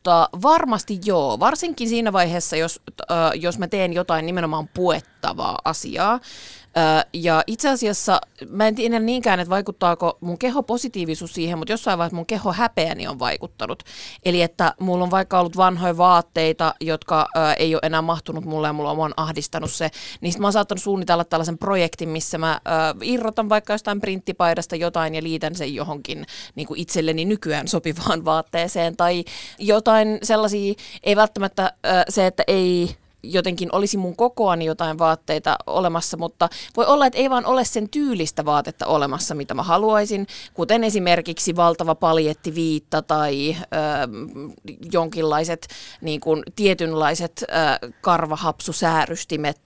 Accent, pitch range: native, 160-205 Hz